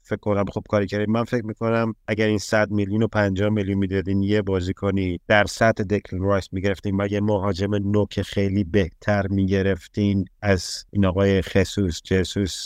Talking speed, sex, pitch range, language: 170 wpm, male, 95-110 Hz, Persian